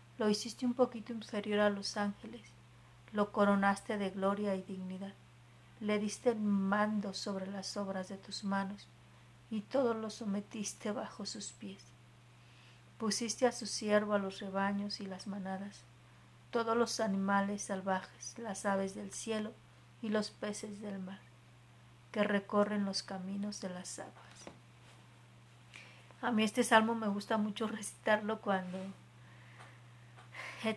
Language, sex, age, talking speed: Spanish, female, 40-59, 140 wpm